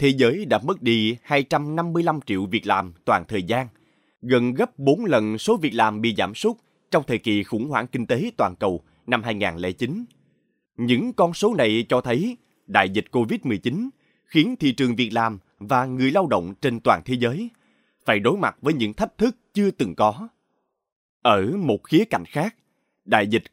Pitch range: 110-165 Hz